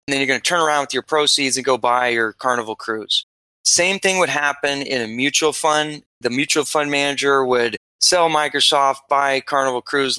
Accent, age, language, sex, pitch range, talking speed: American, 20-39, English, male, 130-155 Hz, 200 wpm